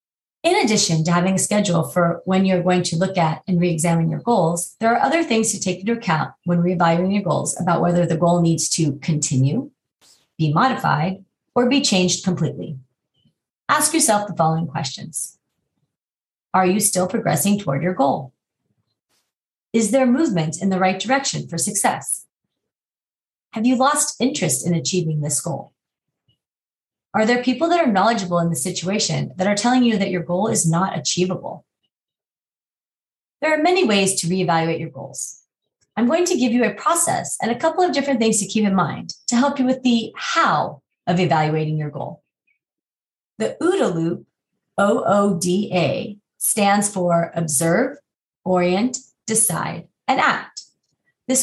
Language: English